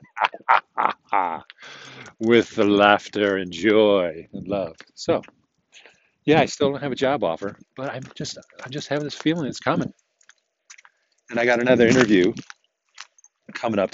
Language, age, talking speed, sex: English, 40-59, 140 wpm, male